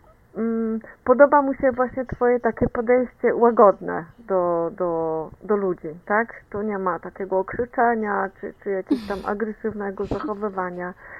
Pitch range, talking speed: 210-260 Hz, 125 wpm